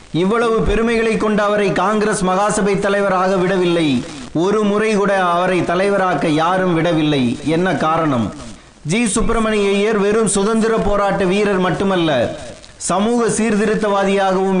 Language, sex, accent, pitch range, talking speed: Tamil, male, native, 175-205 Hz, 105 wpm